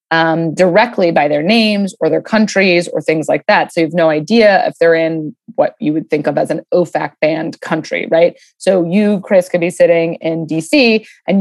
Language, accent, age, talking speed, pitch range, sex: English, American, 20-39, 210 wpm, 170-215 Hz, female